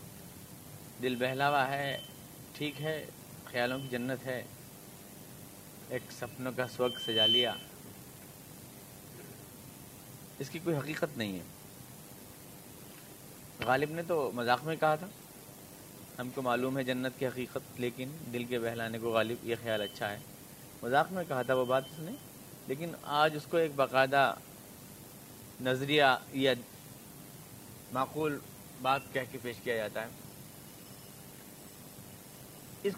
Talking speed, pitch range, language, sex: 125 wpm, 125-160 Hz, Urdu, male